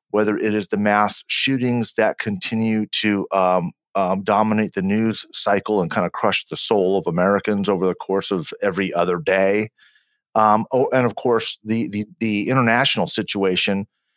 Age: 40-59